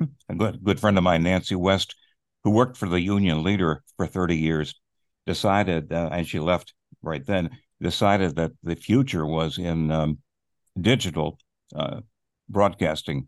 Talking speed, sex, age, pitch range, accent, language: 155 wpm, male, 60-79, 85-110 Hz, American, English